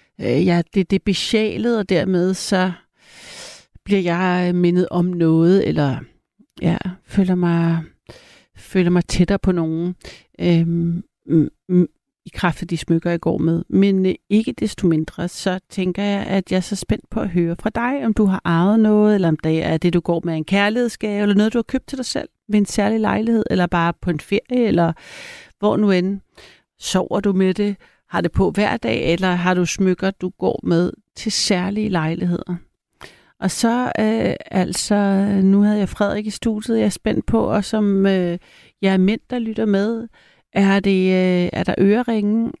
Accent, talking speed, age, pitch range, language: native, 180 wpm, 60-79, 175-210 Hz, Danish